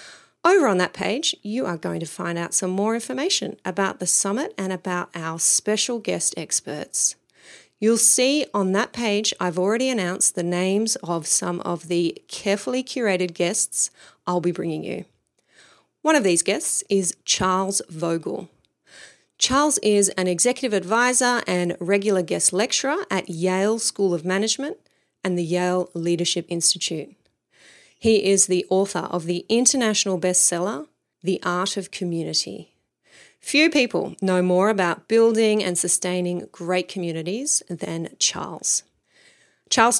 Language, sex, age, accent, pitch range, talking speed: English, female, 30-49, Australian, 180-220 Hz, 140 wpm